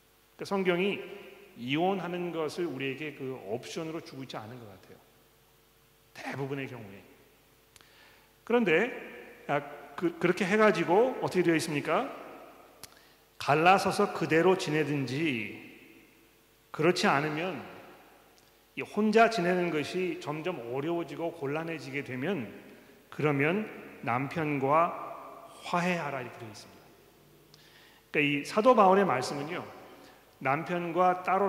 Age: 40-59